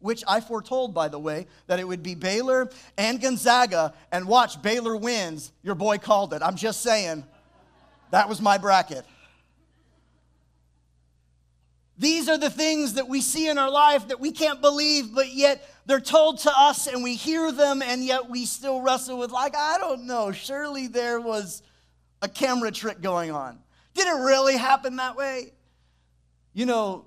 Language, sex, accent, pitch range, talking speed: English, male, American, 155-255 Hz, 175 wpm